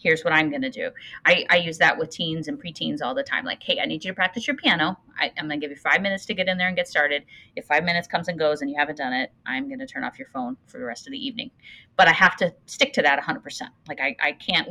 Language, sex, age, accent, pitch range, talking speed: English, female, 30-49, American, 155-250 Hz, 310 wpm